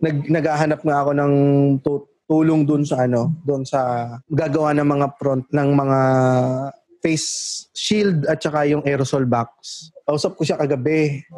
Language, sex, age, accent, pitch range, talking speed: Filipino, male, 20-39, native, 135-165 Hz, 150 wpm